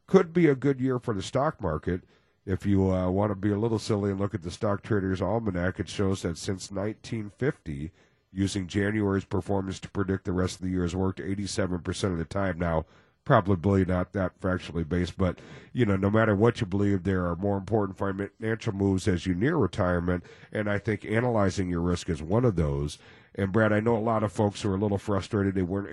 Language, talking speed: English, 220 wpm